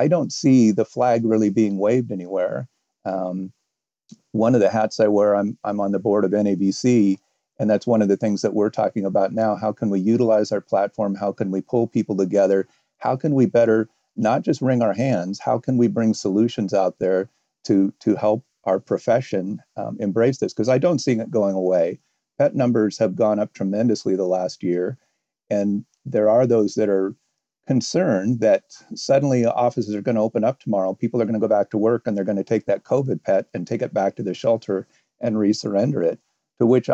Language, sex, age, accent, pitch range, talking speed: English, male, 50-69, American, 100-115 Hz, 210 wpm